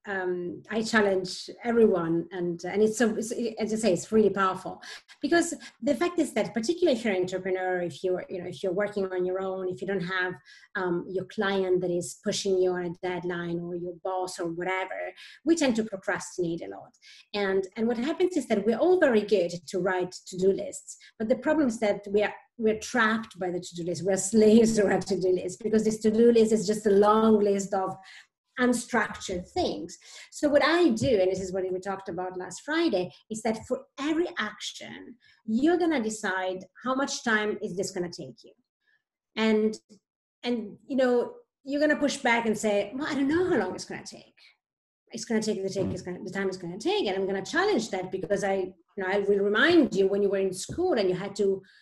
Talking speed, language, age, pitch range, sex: 215 wpm, English, 30-49, 185-235 Hz, female